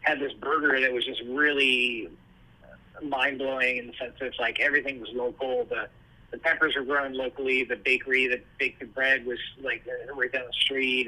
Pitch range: 125-150 Hz